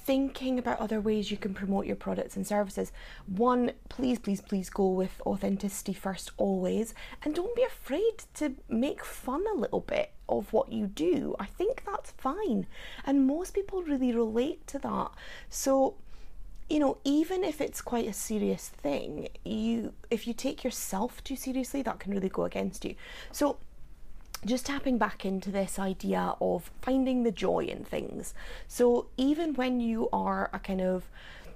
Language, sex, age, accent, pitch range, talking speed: English, female, 30-49, British, 195-265 Hz, 170 wpm